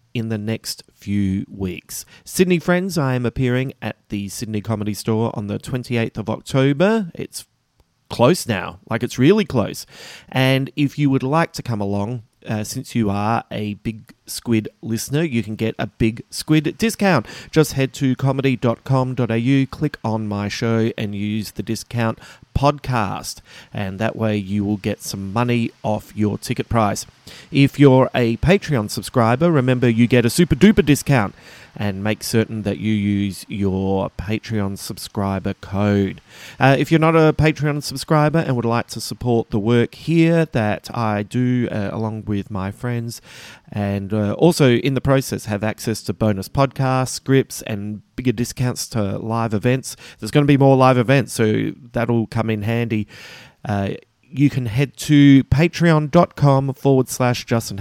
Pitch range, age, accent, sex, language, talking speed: 105-135 Hz, 40-59, Australian, male, English, 165 wpm